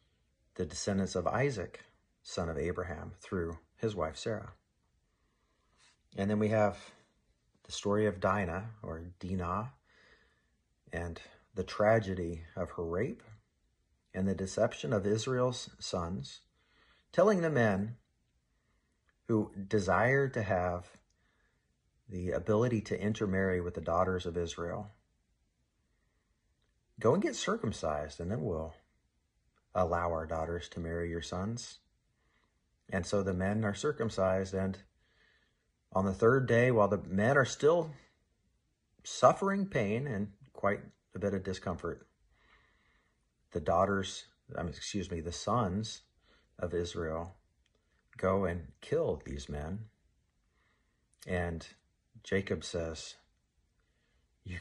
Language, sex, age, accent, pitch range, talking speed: English, male, 40-59, American, 85-105 Hz, 115 wpm